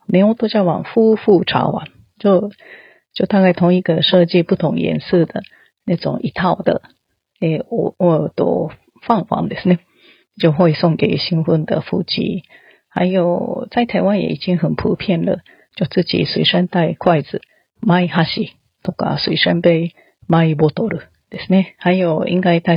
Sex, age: female, 30-49